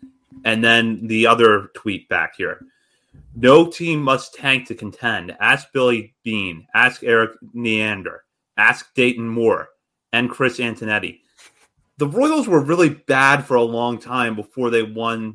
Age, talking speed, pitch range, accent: 30-49, 145 wpm, 115-150 Hz, American